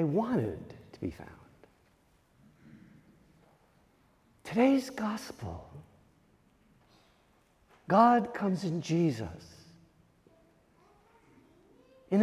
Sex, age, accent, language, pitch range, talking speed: male, 50-69, American, English, 180-245 Hz, 55 wpm